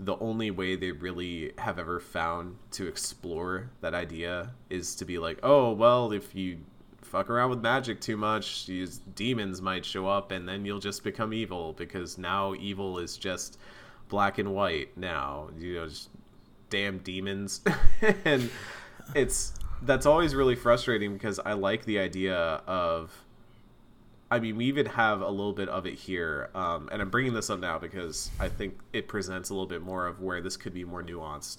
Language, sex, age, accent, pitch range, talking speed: English, male, 20-39, American, 90-110 Hz, 185 wpm